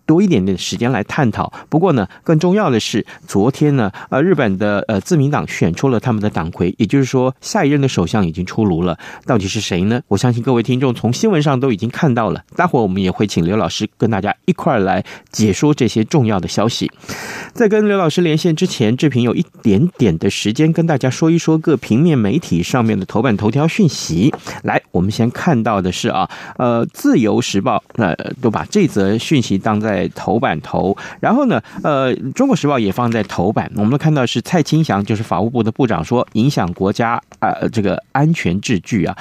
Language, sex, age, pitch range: Chinese, male, 30-49, 110-160 Hz